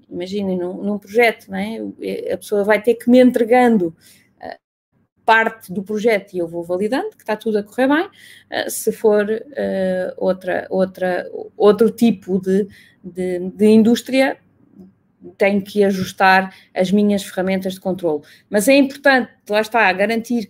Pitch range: 200-250 Hz